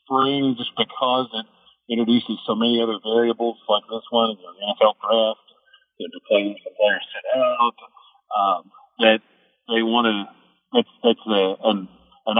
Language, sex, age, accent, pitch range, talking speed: English, male, 50-69, American, 105-140 Hz, 130 wpm